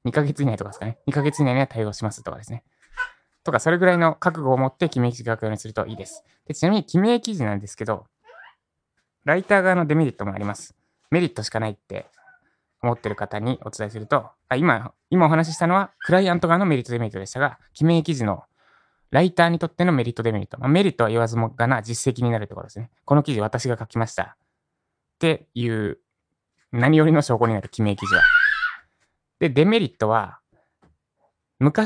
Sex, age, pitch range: male, 20-39, 115-160 Hz